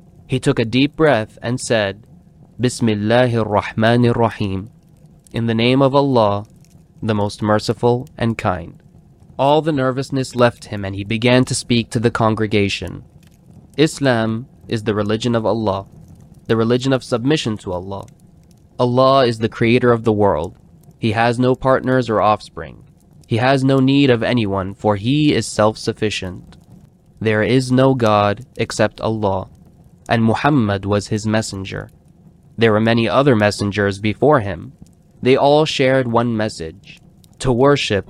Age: 20-39